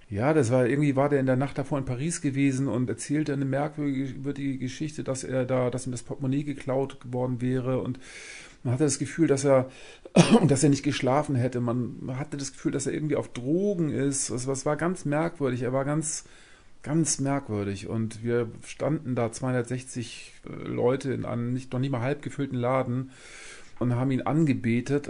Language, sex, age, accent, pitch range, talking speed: German, male, 40-59, German, 120-140 Hz, 190 wpm